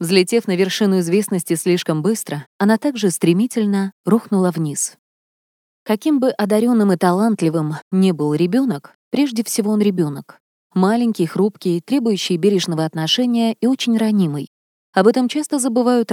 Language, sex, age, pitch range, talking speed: Russian, female, 20-39, 175-225 Hz, 130 wpm